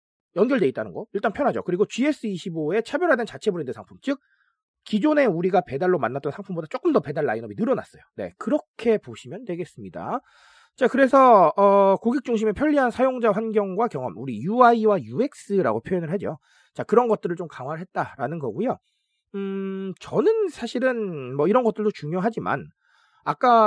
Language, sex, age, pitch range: Korean, male, 40-59, 170-245 Hz